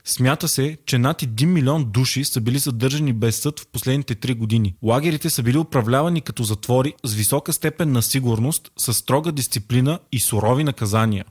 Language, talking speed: Bulgarian, 175 wpm